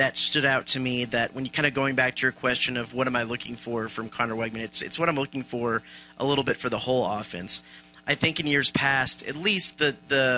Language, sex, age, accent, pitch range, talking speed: English, male, 30-49, American, 120-145 Hz, 265 wpm